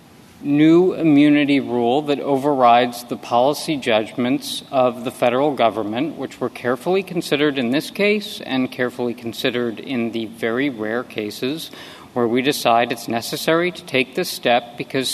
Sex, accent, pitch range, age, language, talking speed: male, American, 120-155 Hz, 50-69, English, 145 wpm